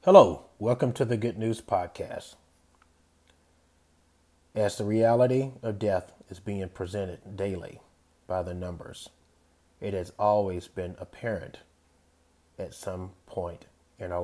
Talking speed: 120 wpm